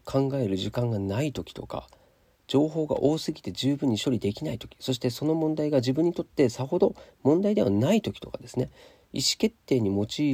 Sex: male